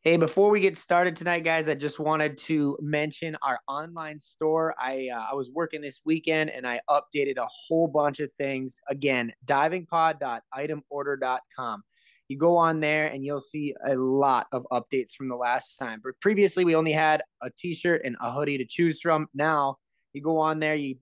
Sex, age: male, 20-39